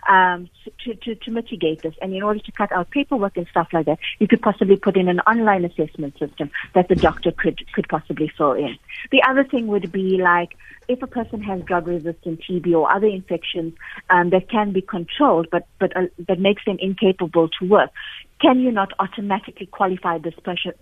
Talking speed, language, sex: 205 wpm, English, female